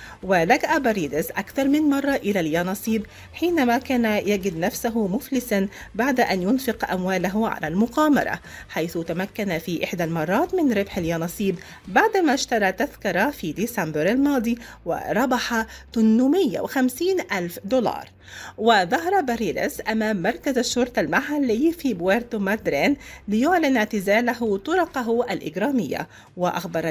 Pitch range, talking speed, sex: 195-270 Hz, 110 wpm, female